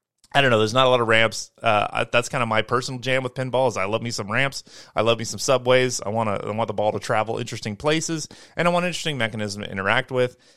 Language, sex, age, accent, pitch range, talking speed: English, male, 30-49, American, 110-145 Hz, 280 wpm